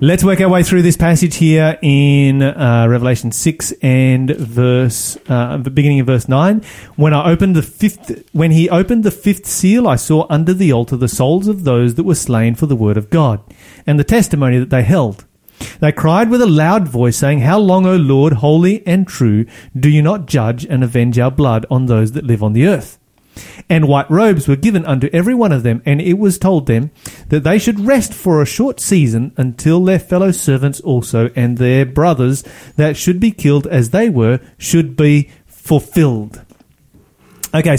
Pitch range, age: 125-170 Hz, 30-49